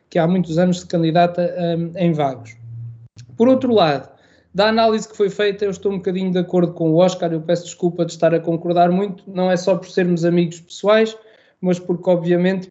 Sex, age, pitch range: male, 20-39, 175-200 Hz